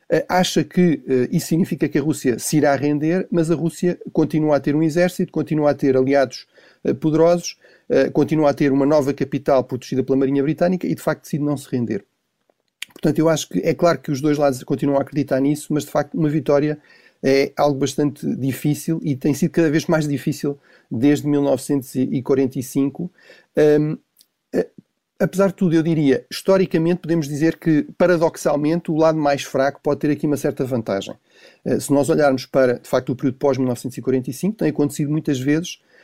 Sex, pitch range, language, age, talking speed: male, 130-155 Hz, Portuguese, 40-59, 175 wpm